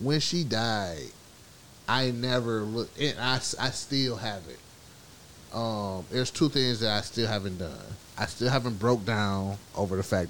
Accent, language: American, English